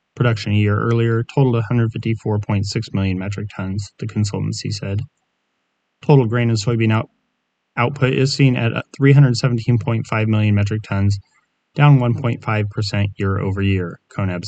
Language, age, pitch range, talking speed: English, 30-49, 100-120 Hz, 115 wpm